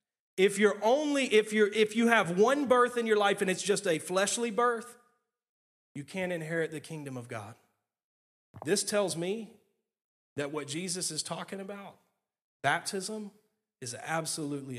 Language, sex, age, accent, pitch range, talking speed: English, male, 30-49, American, 150-200 Hz, 155 wpm